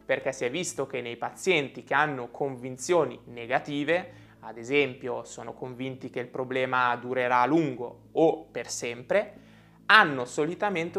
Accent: native